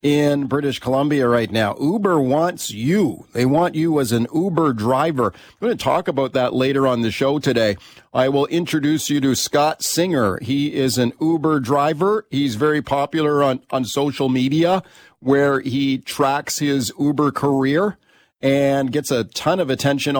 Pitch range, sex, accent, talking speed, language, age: 130-160 Hz, male, American, 170 wpm, English, 40-59